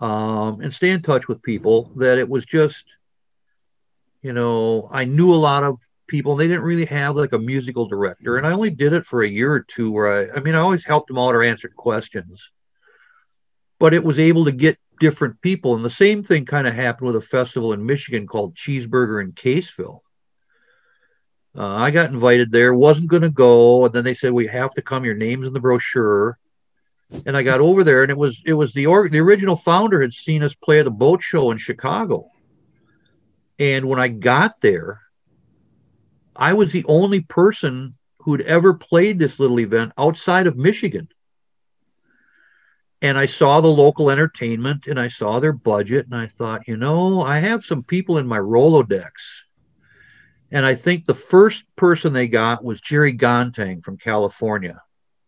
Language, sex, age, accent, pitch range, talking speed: English, male, 50-69, American, 120-165 Hz, 190 wpm